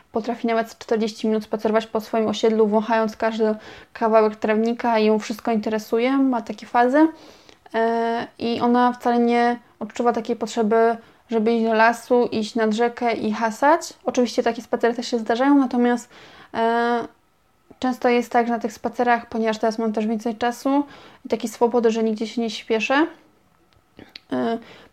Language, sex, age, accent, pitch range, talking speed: Polish, female, 20-39, native, 225-250 Hz, 160 wpm